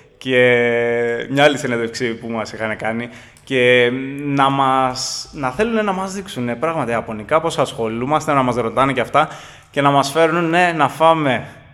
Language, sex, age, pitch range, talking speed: Greek, male, 20-39, 125-160 Hz, 150 wpm